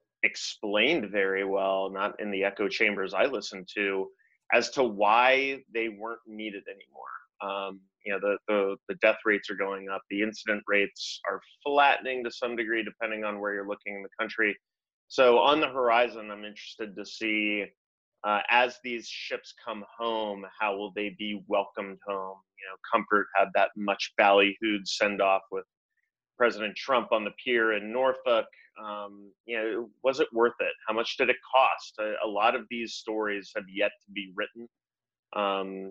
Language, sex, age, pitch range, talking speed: English, male, 30-49, 100-115 Hz, 175 wpm